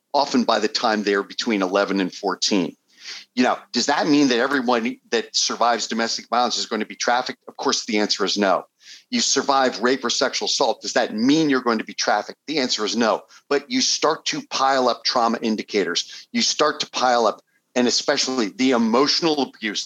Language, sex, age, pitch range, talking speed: English, male, 50-69, 115-150 Hz, 200 wpm